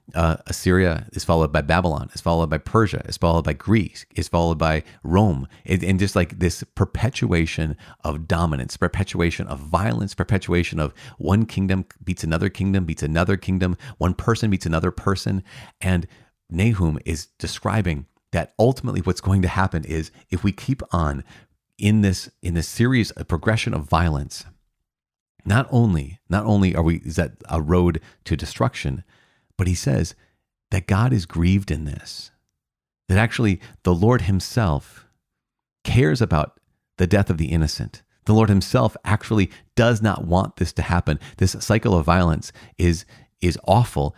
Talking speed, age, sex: 160 wpm, 40-59, male